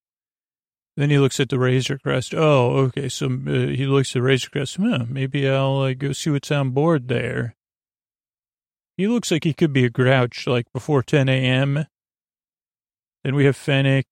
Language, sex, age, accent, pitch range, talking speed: English, male, 40-59, American, 125-140 Hz, 185 wpm